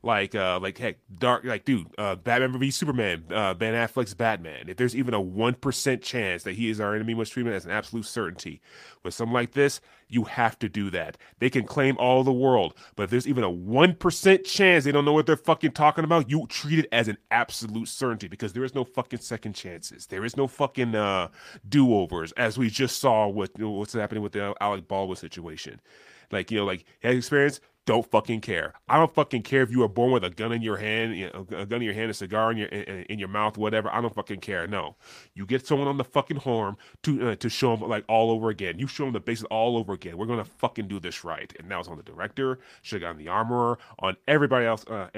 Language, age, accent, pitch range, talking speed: English, 30-49, American, 105-135 Hz, 245 wpm